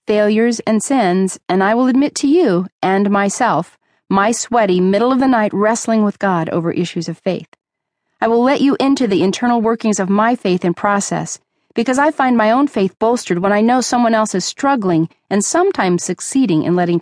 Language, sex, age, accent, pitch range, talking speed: English, female, 40-59, American, 175-240 Hz, 185 wpm